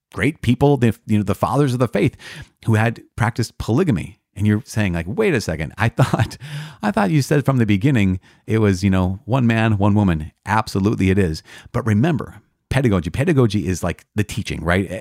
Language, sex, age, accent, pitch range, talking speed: English, male, 30-49, American, 90-115 Hz, 200 wpm